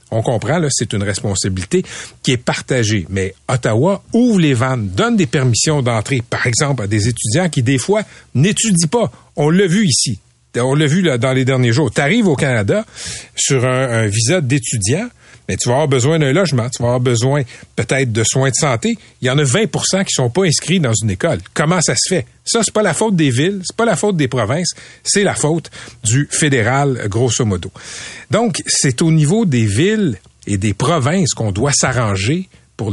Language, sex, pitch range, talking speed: French, male, 115-160 Hz, 205 wpm